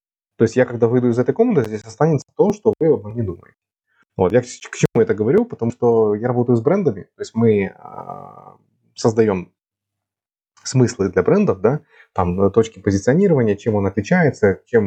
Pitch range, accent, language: 105-145 Hz, native, Russian